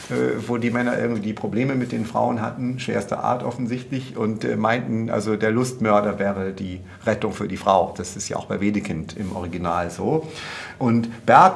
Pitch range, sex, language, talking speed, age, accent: 115-165 Hz, male, German, 175 wpm, 50-69, German